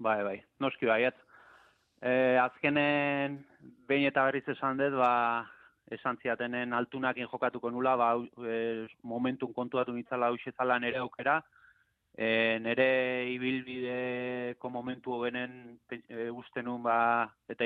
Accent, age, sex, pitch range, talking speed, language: Spanish, 20-39, male, 115-125 Hz, 100 wpm, Polish